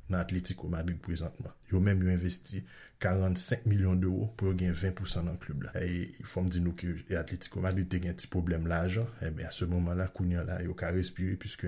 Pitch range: 90-105 Hz